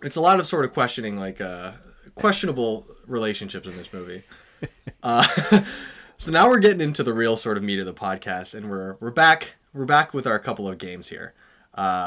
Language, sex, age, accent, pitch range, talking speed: English, male, 20-39, American, 105-160 Hz, 205 wpm